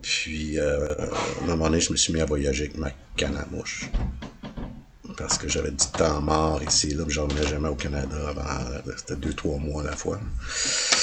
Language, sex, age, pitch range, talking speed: French, male, 50-69, 75-90 Hz, 205 wpm